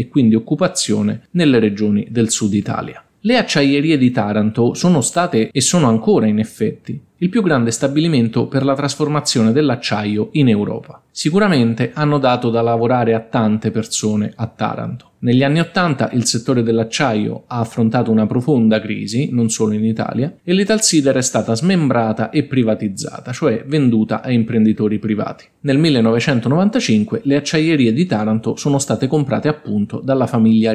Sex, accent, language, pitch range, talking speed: male, native, Italian, 110-145 Hz, 150 wpm